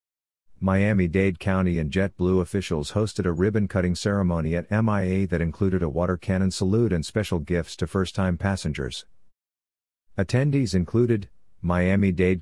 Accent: American